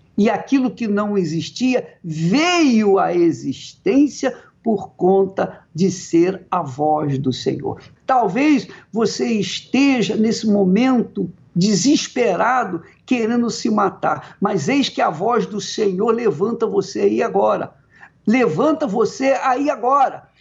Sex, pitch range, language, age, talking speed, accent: male, 190-265 Hz, Portuguese, 50-69, 120 wpm, Brazilian